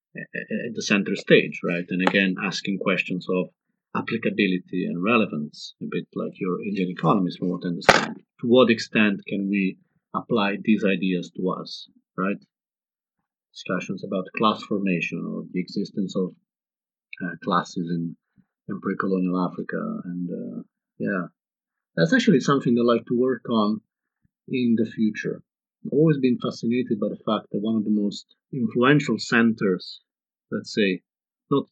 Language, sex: English, male